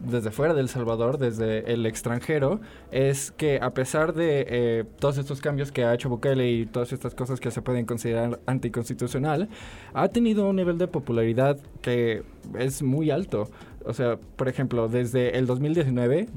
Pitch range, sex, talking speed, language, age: 115-135 Hz, male, 170 wpm, English, 20-39